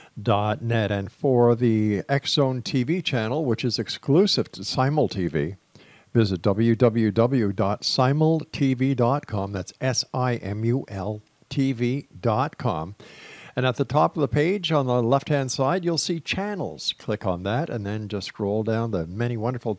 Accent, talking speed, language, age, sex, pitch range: American, 125 wpm, English, 50-69, male, 110-145 Hz